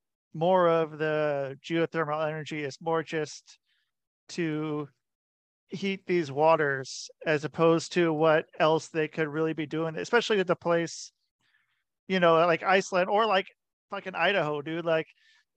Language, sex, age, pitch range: English, male, 40-59, 145-170 Hz